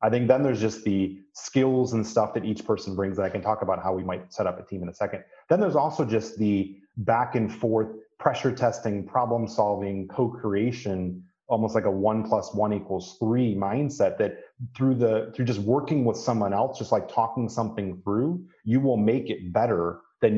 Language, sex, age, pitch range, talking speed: English, male, 30-49, 100-120 Hz, 205 wpm